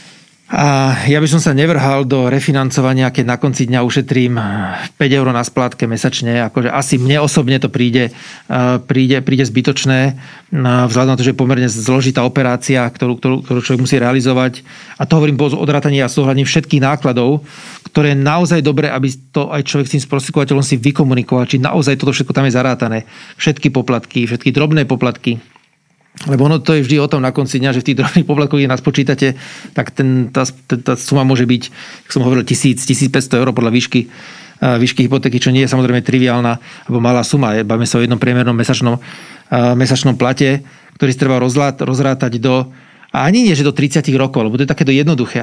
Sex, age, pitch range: male, 40-59, 125-145 Hz